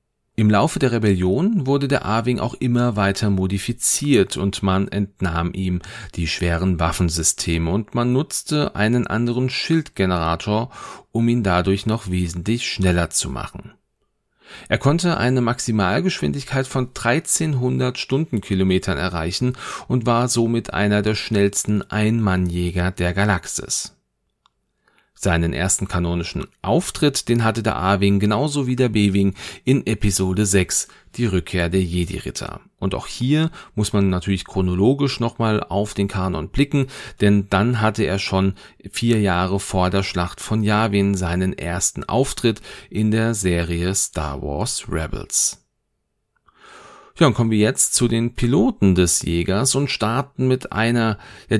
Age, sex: 40-59, male